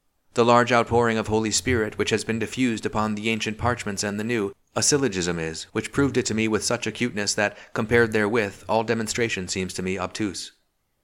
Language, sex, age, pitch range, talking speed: English, male, 30-49, 95-115 Hz, 200 wpm